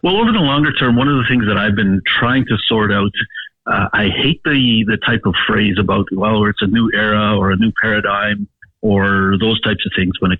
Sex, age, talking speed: male, 50-69, 240 wpm